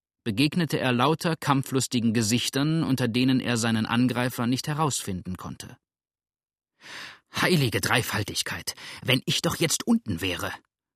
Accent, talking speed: German, 115 wpm